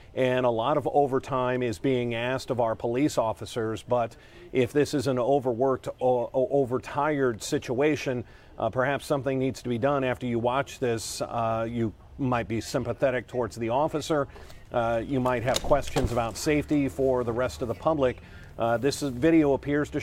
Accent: American